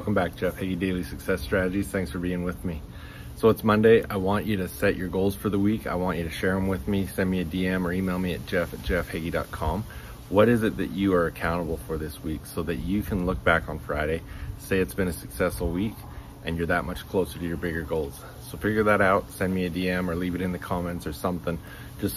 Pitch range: 85-100 Hz